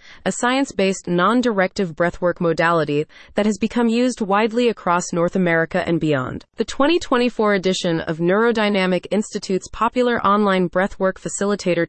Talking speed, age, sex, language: 125 wpm, 30-49, female, English